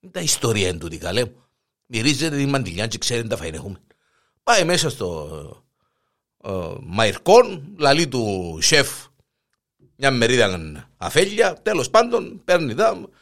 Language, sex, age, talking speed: Greek, male, 50-69, 115 wpm